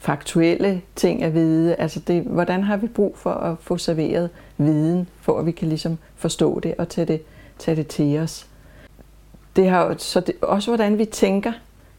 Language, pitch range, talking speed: English, 155-180 Hz, 175 wpm